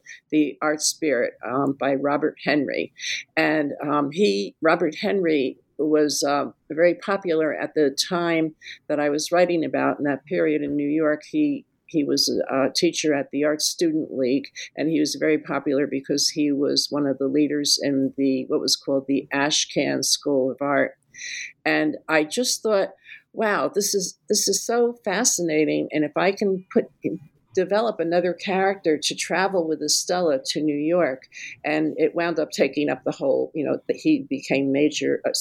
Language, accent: English, American